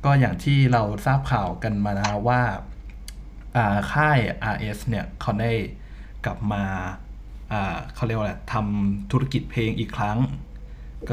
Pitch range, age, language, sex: 100-125 Hz, 20-39, Thai, male